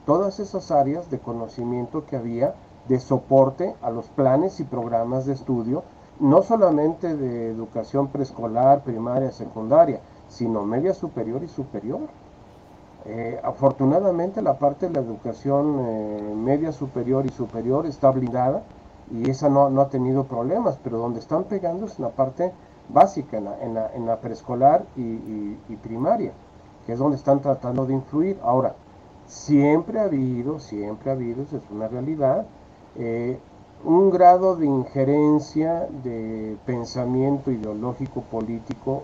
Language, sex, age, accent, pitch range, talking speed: Spanish, male, 50-69, Mexican, 110-140 Hz, 140 wpm